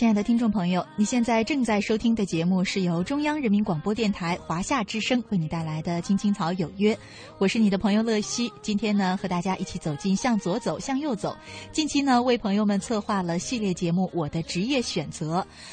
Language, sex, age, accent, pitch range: Chinese, female, 20-39, native, 185-245 Hz